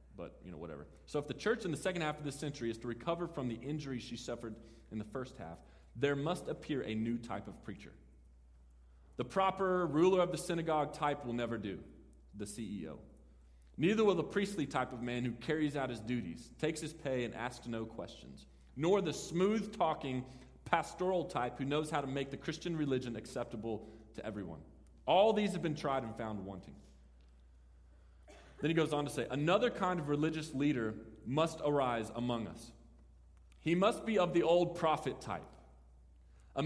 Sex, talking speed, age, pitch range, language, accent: male, 185 wpm, 30-49, 115-180 Hz, English, American